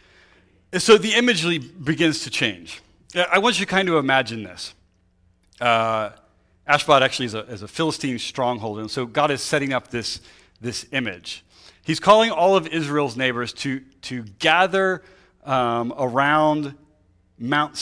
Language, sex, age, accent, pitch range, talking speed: English, male, 30-49, American, 110-160 Hz, 150 wpm